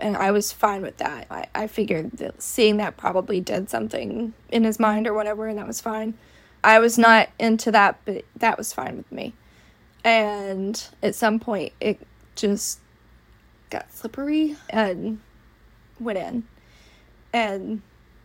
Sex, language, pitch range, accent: female, English, 210-230 Hz, American